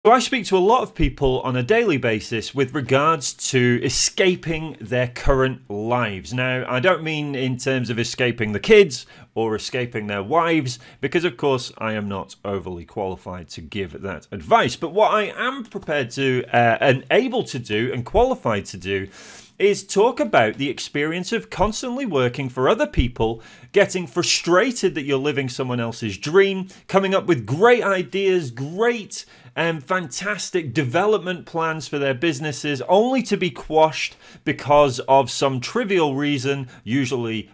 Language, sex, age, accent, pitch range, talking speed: English, male, 30-49, British, 120-170 Hz, 165 wpm